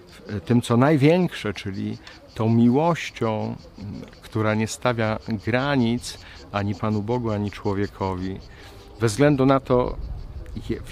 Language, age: Polish, 50-69